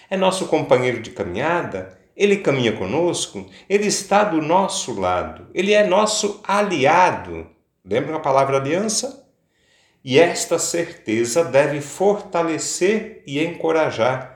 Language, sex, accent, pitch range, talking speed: Portuguese, male, Brazilian, 110-170 Hz, 115 wpm